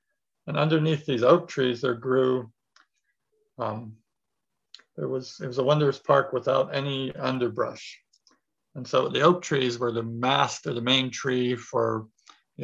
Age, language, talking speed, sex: 50-69, English, 145 wpm, male